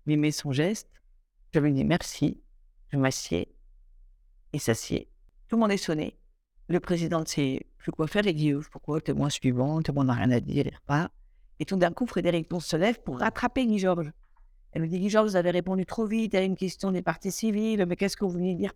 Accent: French